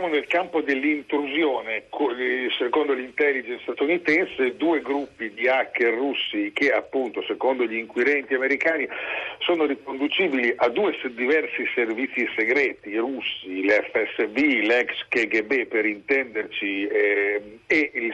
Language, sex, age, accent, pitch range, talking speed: Italian, male, 50-69, native, 115-155 Hz, 115 wpm